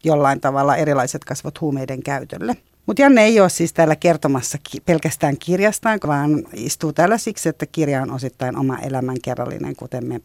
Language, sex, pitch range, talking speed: Finnish, female, 145-180 Hz, 160 wpm